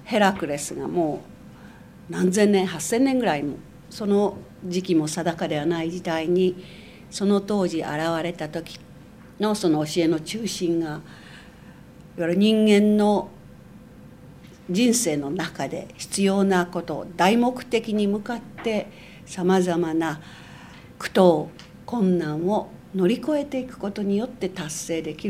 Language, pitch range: Japanese, 160-205 Hz